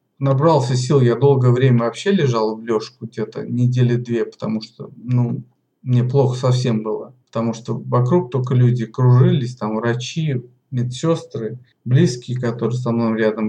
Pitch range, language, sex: 120-135 Hz, Russian, male